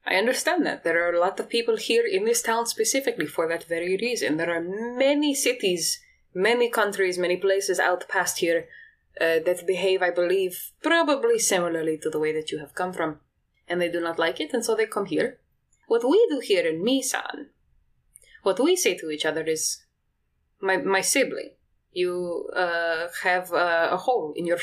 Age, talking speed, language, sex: 20-39, 190 wpm, English, female